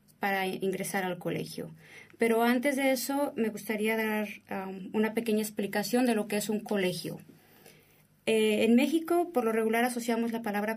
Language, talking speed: Spanish, 165 wpm